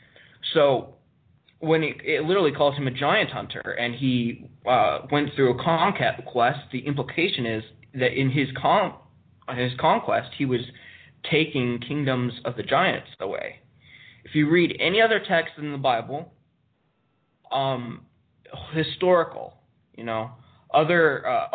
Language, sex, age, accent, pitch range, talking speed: English, male, 20-39, American, 130-155 Hz, 140 wpm